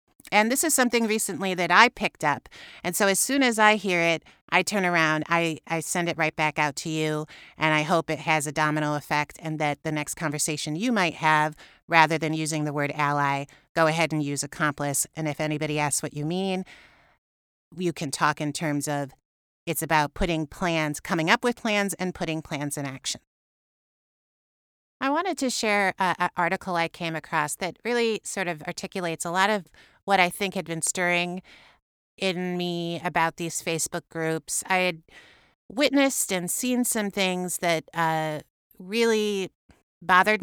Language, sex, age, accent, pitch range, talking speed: English, female, 30-49, American, 155-185 Hz, 180 wpm